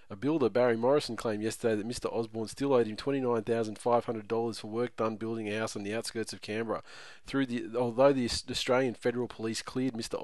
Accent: Australian